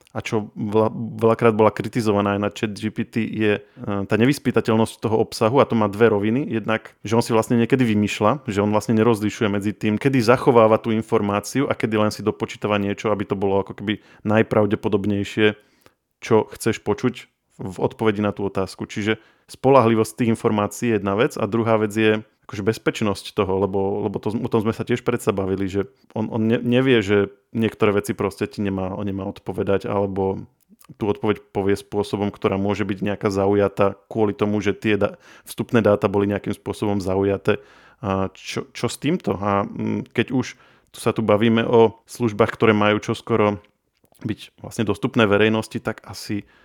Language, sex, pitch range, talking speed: Slovak, male, 100-115 Hz, 175 wpm